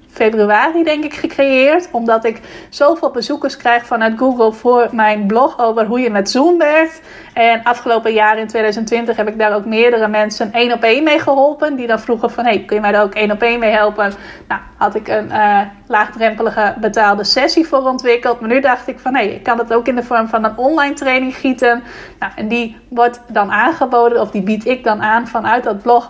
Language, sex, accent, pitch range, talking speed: Dutch, female, Dutch, 215-250 Hz, 220 wpm